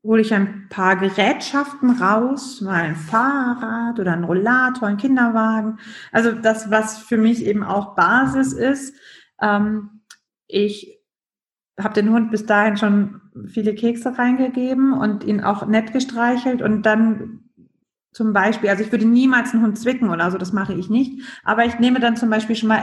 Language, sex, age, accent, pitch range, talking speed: German, female, 30-49, German, 195-235 Hz, 165 wpm